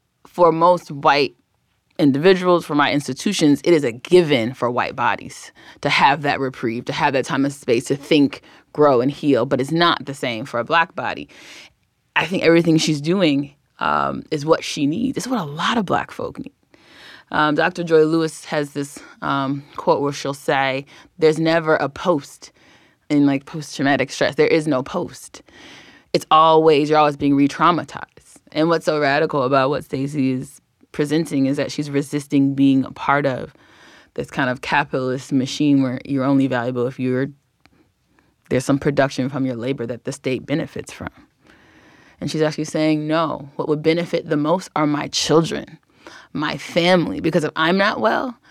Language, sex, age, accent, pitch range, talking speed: English, female, 20-39, American, 135-160 Hz, 180 wpm